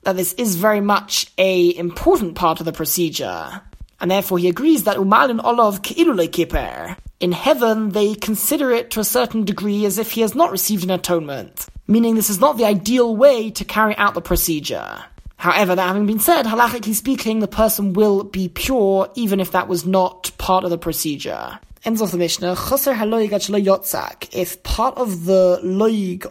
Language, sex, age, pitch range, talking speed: English, male, 20-39, 180-215 Hz, 170 wpm